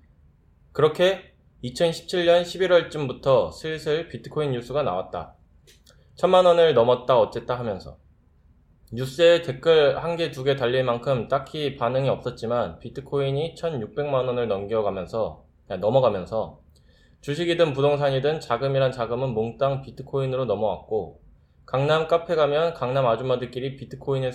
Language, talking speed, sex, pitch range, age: English, 95 wpm, male, 115-155 Hz, 20-39